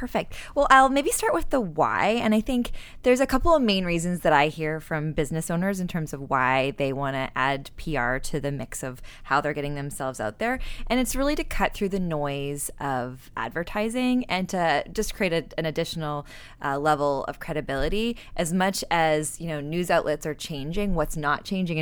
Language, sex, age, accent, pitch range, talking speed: English, female, 20-39, American, 145-185 Hz, 205 wpm